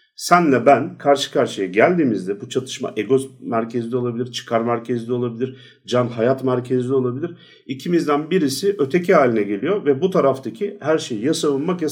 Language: Turkish